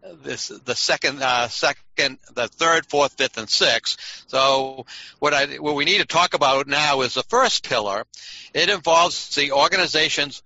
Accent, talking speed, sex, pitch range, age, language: American, 165 wpm, male, 135-175 Hz, 60-79, English